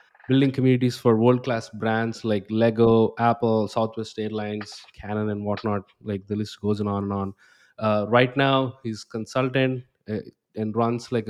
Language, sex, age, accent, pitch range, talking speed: English, male, 20-39, Indian, 110-130 Hz, 155 wpm